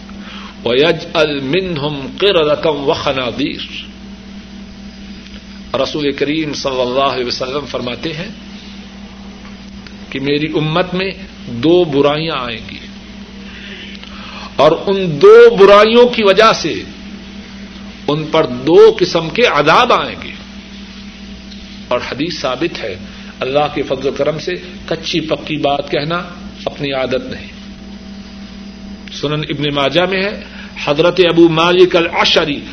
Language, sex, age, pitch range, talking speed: Urdu, male, 60-79, 155-205 Hz, 110 wpm